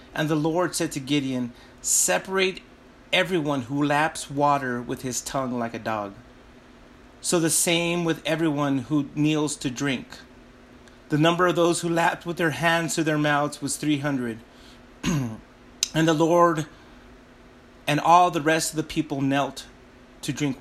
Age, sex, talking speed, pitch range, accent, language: 30-49, male, 155 wpm, 125-160 Hz, American, English